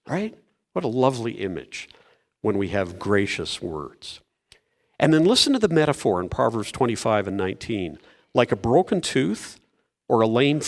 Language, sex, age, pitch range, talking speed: English, male, 50-69, 115-170 Hz, 155 wpm